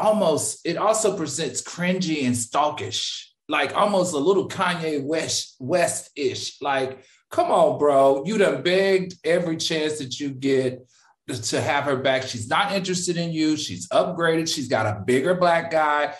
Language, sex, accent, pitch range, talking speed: English, male, American, 150-220 Hz, 165 wpm